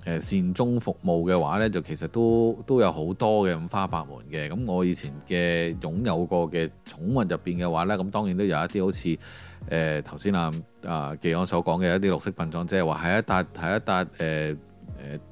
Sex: male